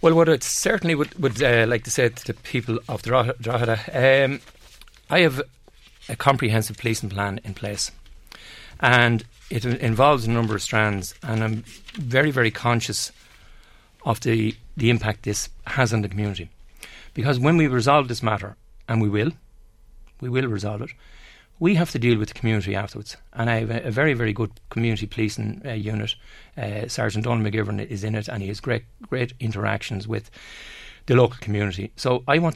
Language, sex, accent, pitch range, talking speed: English, male, Irish, 105-125 Hz, 180 wpm